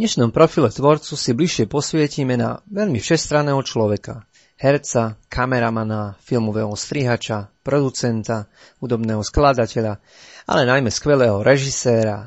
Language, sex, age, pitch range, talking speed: Slovak, male, 30-49, 115-145 Hz, 110 wpm